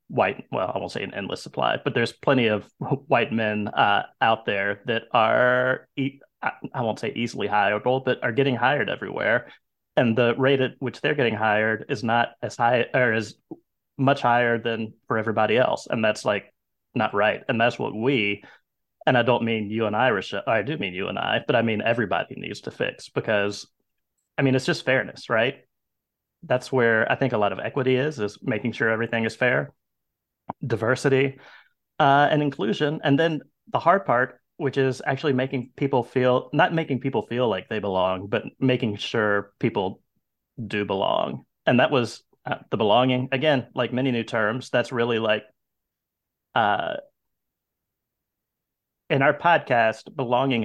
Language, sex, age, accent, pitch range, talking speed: English, male, 30-49, American, 110-135 Hz, 180 wpm